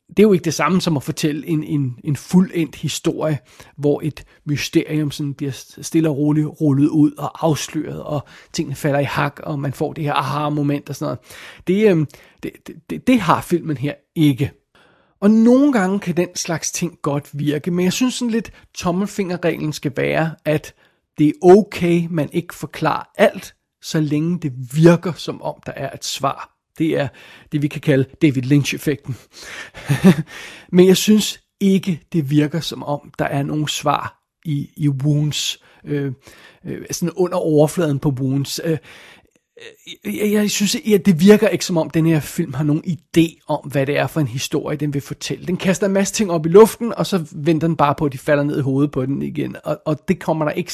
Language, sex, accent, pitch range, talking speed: Danish, male, native, 145-180 Hz, 200 wpm